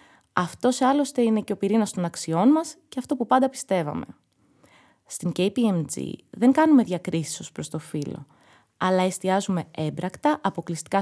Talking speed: 145 wpm